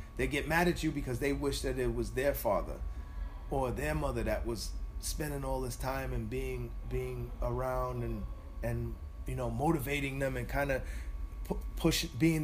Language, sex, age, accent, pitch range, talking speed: English, male, 30-49, American, 110-140 Hz, 175 wpm